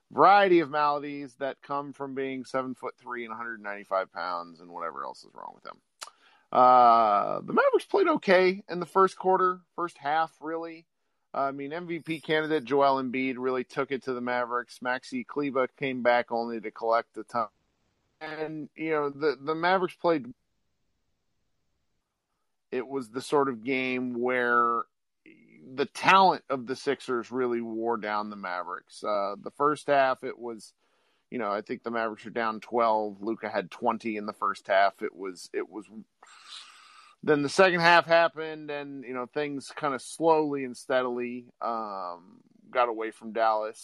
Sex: male